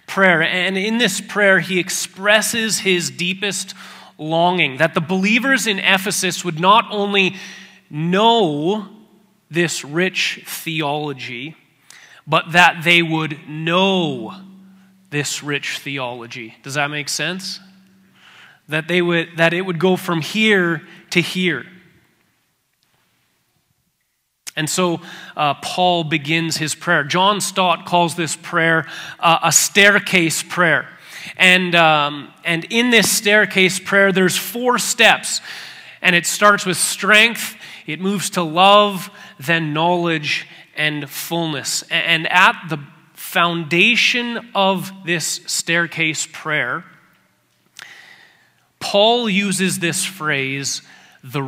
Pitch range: 160-195 Hz